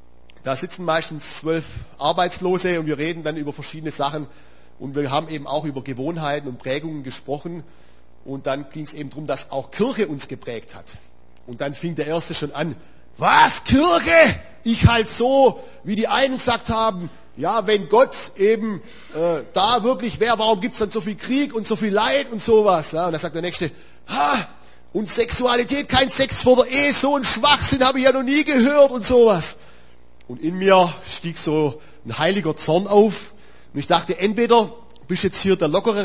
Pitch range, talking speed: 130-210 Hz, 190 wpm